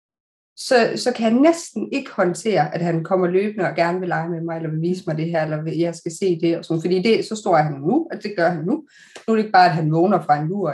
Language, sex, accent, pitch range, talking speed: Danish, female, native, 165-195 Hz, 295 wpm